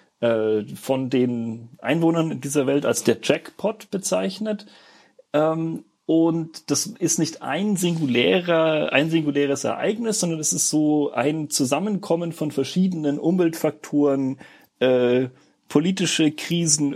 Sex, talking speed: male, 105 wpm